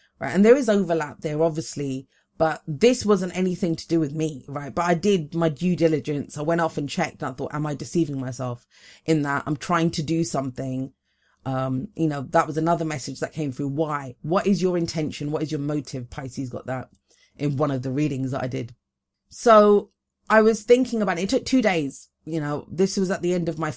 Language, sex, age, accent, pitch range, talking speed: English, female, 30-49, British, 150-190 Hz, 225 wpm